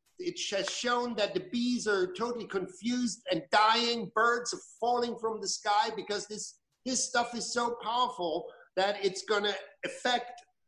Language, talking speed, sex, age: English, 165 wpm, male, 50-69